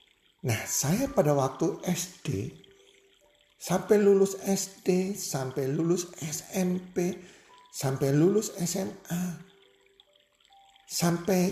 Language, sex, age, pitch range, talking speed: Indonesian, male, 50-69, 135-210 Hz, 80 wpm